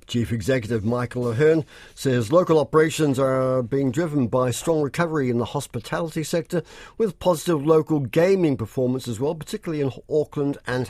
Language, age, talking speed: English, 50-69, 155 wpm